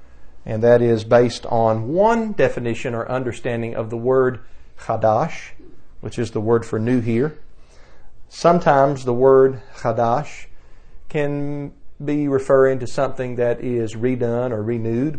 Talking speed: 135 wpm